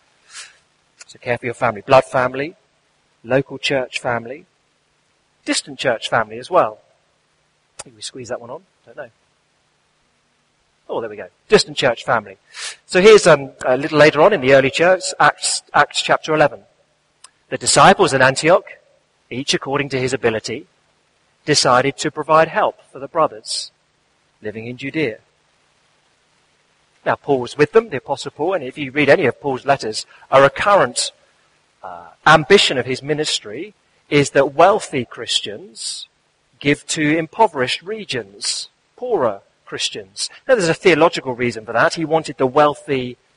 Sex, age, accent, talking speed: male, 30-49, British, 150 wpm